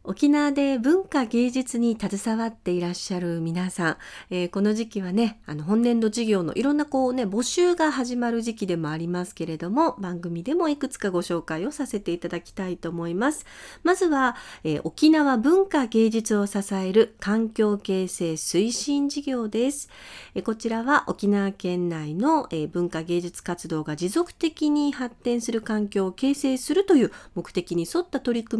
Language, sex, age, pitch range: Japanese, female, 40-59, 175-290 Hz